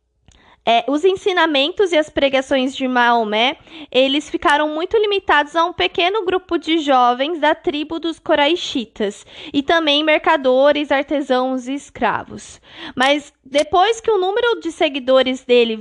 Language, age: Portuguese, 20-39